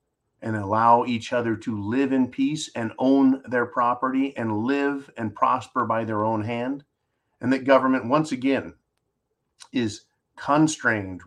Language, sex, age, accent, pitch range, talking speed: English, male, 40-59, American, 115-150 Hz, 145 wpm